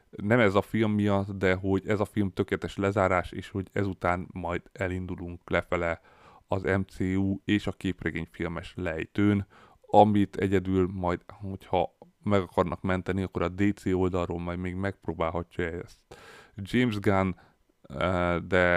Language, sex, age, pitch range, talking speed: Hungarian, male, 30-49, 85-100 Hz, 140 wpm